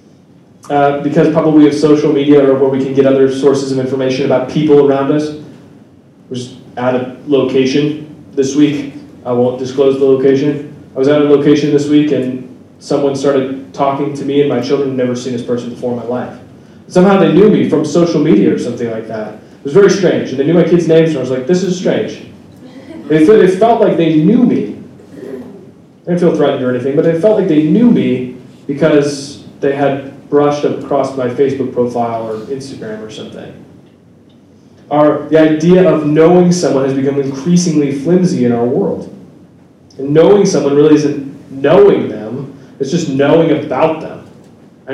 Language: English